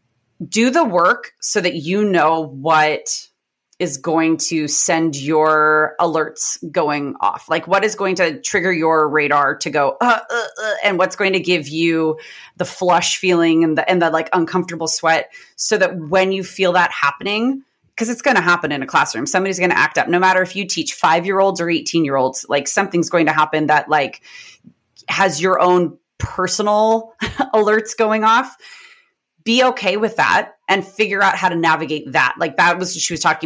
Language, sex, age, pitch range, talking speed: English, female, 30-49, 160-195 Hz, 195 wpm